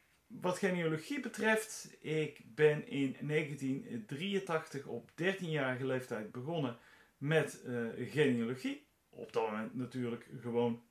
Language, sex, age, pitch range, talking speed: Dutch, male, 40-59, 125-160 Hz, 105 wpm